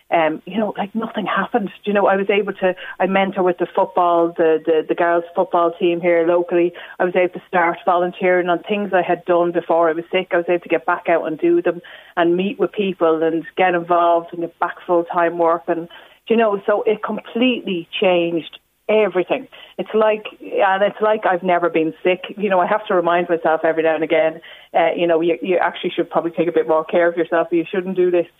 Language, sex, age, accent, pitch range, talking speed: English, female, 30-49, Irish, 165-185 Hz, 235 wpm